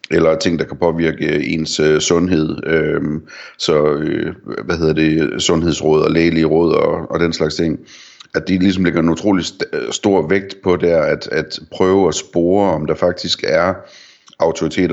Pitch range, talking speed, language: 80-85 Hz, 155 wpm, Danish